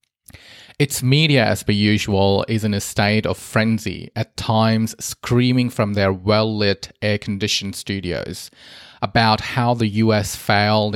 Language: English